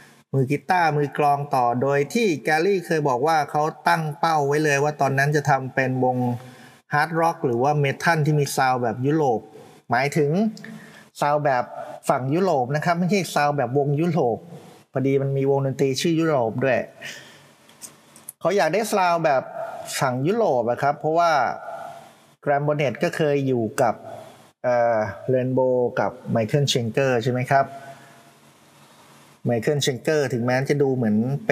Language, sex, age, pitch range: Thai, male, 30-49, 125-150 Hz